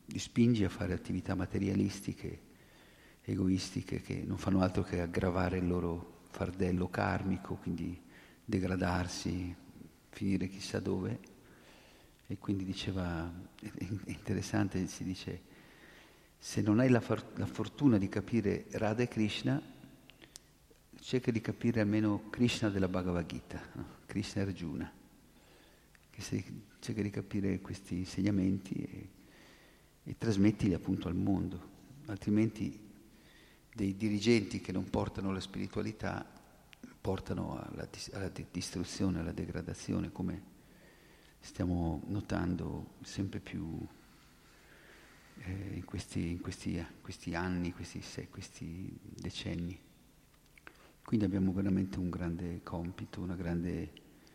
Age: 50-69